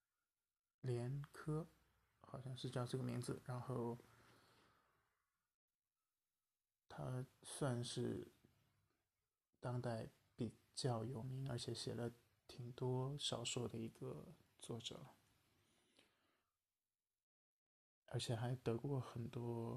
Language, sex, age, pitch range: Chinese, male, 20-39, 120-130 Hz